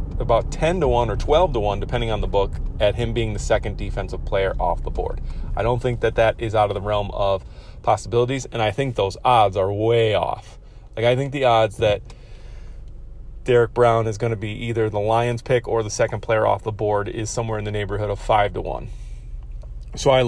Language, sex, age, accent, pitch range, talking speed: English, male, 30-49, American, 100-125 Hz, 225 wpm